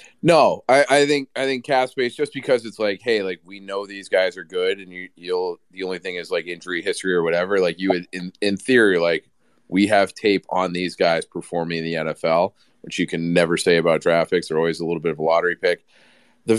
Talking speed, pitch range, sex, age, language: 240 wpm, 90-110 Hz, male, 30-49, English